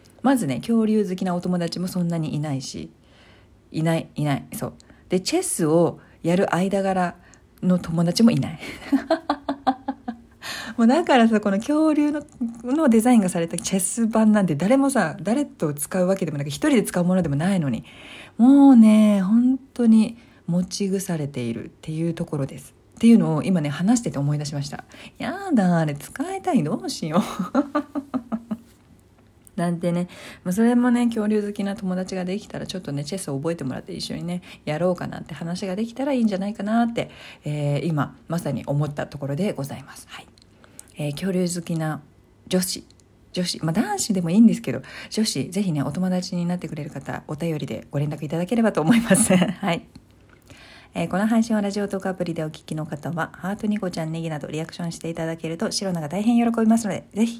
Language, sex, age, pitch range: Japanese, female, 40-59, 160-225 Hz